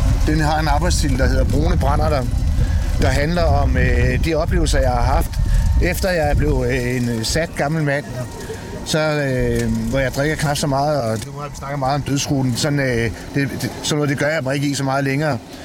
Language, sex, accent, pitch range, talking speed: Danish, male, native, 115-140 Hz, 215 wpm